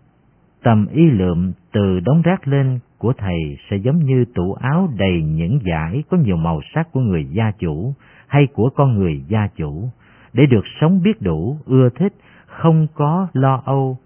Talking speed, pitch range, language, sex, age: 180 wpm, 95-145 Hz, Vietnamese, male, 50-69